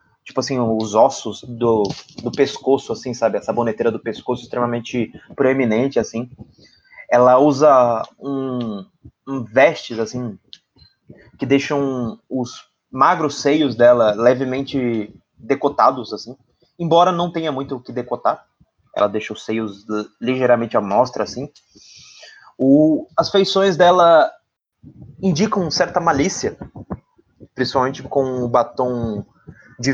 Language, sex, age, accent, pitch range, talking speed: Portuguese, male, 20-39, Brazilian, 120-175 Hz, 120 wpm